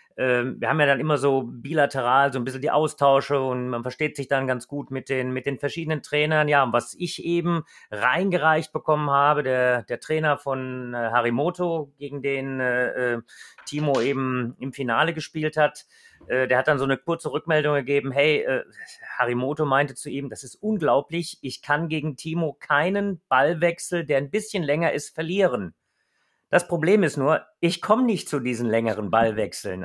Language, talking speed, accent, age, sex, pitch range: German, 175 wpm, German, 30-49, male, 135-170 Hz